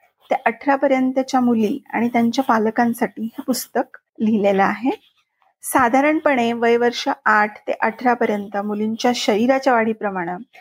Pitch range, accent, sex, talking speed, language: 225-270 Hz, native, female, 120 wpm, Marathi